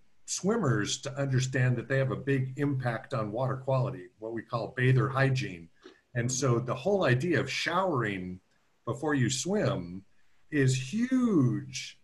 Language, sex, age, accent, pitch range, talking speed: English, male, 50-69, American, 130-160 Hz, 145 wpm